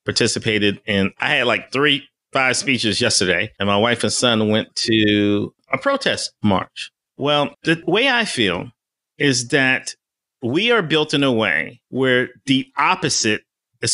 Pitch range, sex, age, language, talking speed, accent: 115-165 Hz, male, 30-49, English, 155 wpm, American